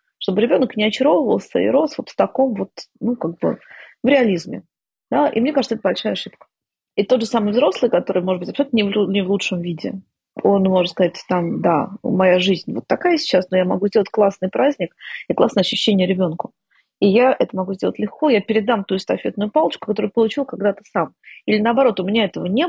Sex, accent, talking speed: female, native, 205 wpm